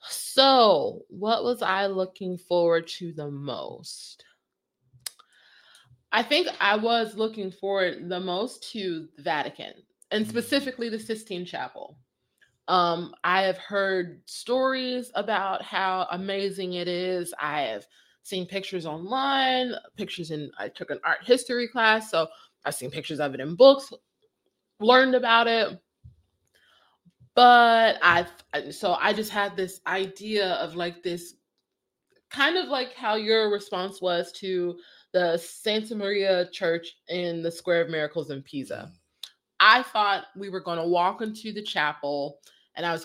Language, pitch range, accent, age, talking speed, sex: English, 170-220 Hz, American, 20-39, 140 wpm, female